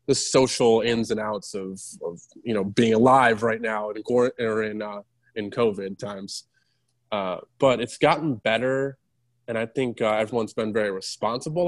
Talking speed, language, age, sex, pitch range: 170 wpm, English, 20-39, male, 105-120 Hz